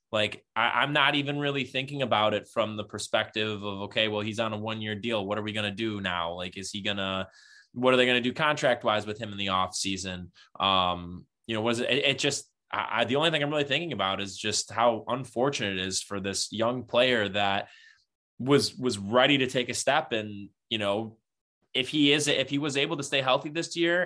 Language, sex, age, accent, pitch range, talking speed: English, male, 20-39, American, 105-135 Hz, 235 wpm